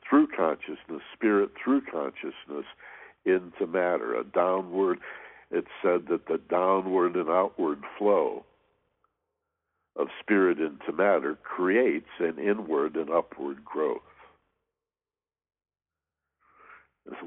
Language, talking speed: English, 95 wpm